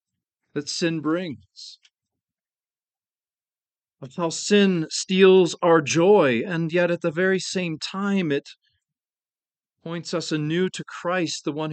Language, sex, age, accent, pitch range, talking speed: English, male, 40-59, American, 150-195 Hz, 125 wpm